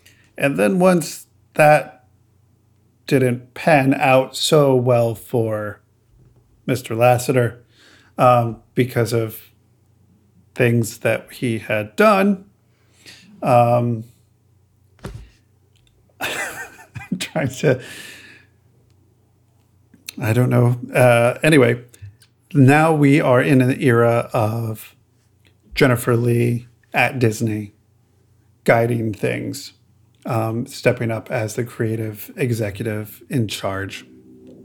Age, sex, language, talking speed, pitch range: 50-69, male, English, 90 wpm, 110-130 Hz